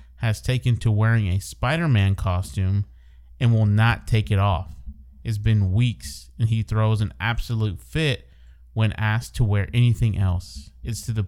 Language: English